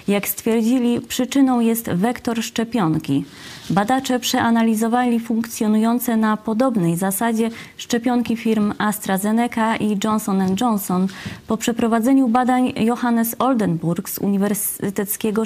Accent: native